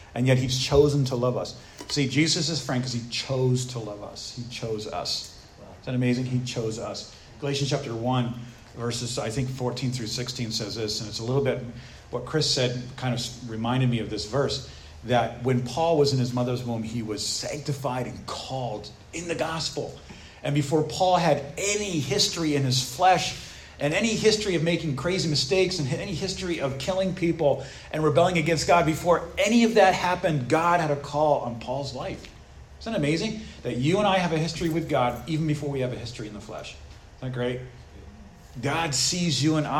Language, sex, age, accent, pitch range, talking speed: English, male, 40-59, American, 125-165 Hz, 200 wpm